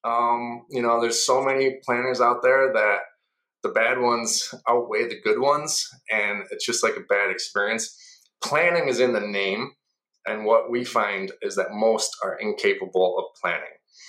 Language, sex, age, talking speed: English, male, 20-39, 170 wpm